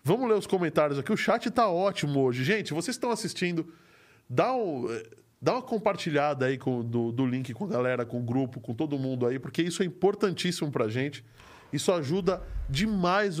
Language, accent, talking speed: Portuguese, Brazilian, 195 wpm